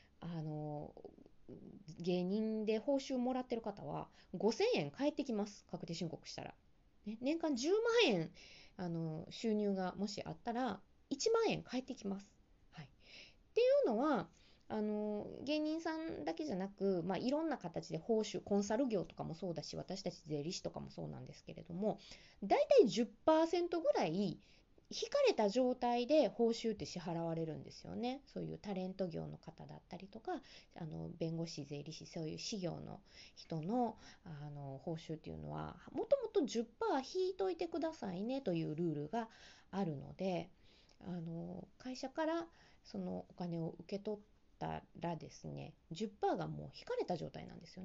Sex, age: female, 20-39